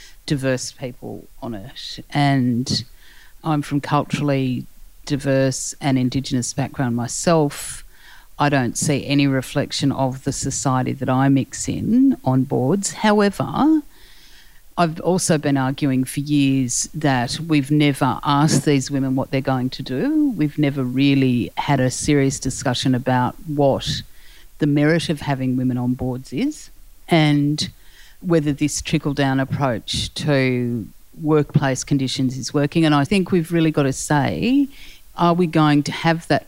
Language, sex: English, female